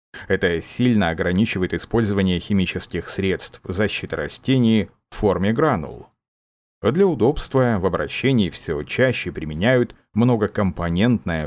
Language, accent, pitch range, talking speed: Russian, native, 95-120 Hz, 100 wpm